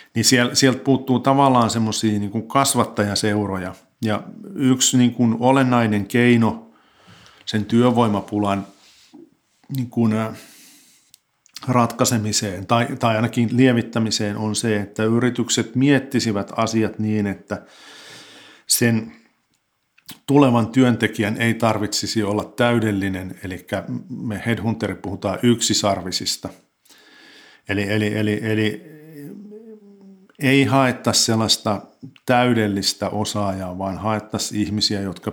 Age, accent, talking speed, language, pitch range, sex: 50-69, native, 85 wpm, Finnish, 105-120 Hz, male